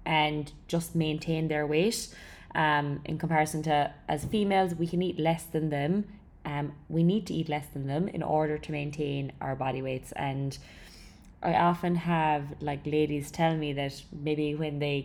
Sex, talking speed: female, 175 wpm